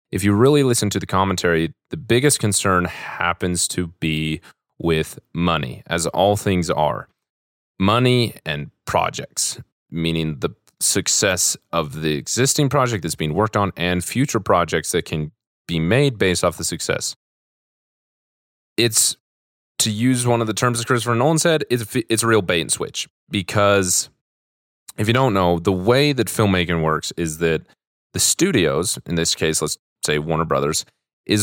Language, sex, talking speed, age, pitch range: English, male, 160 wpm, 30-49, 85-115 Hz